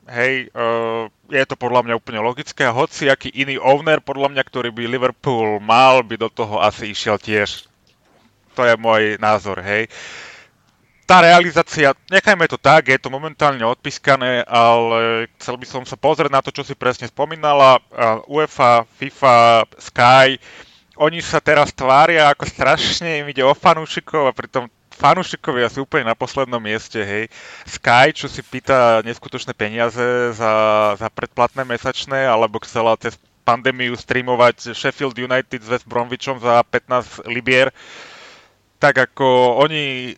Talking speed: 145 wpm